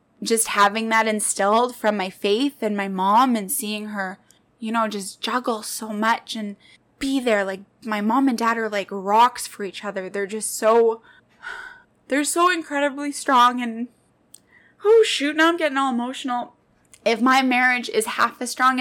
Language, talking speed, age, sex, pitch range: English, 175 wpm, 10-29, female, 220-275 Hz